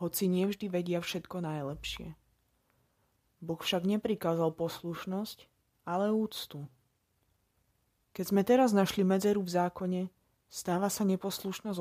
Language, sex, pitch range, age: Slovak, female, 165-200 Hz, 20-39